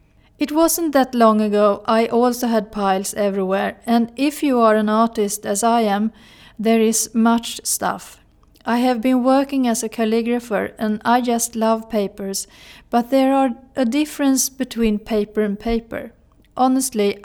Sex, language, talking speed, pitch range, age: female, Swedish, 155 wpm, 210-255 Hz, 40-59